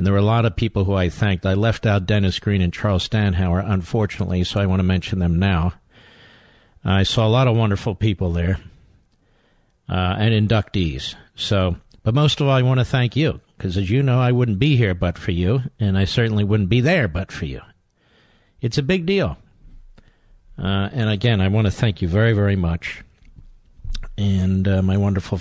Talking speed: 205 wpm